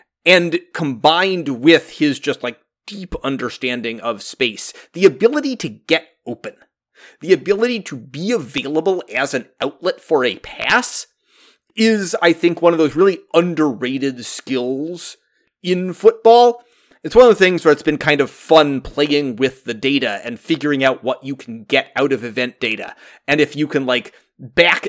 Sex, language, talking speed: male, English, 165 wpm